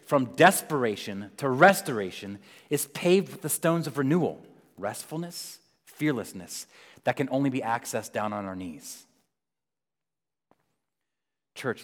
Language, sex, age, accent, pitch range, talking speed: English, male, 30-49, American, 105-145 Hz, 115 wpm